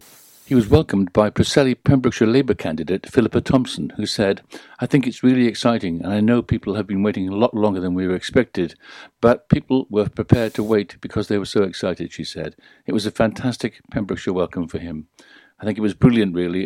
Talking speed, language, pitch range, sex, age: 210 wpm, English, 95-120 Hz, male, 60-79